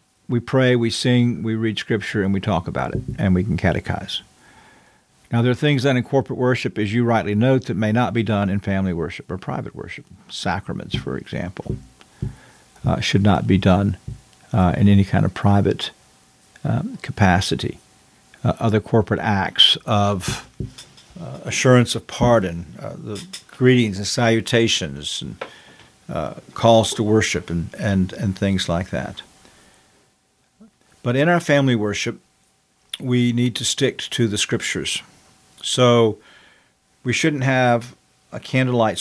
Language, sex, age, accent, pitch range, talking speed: English, male, 50-69, American, 100-120 Hz, 150 wpm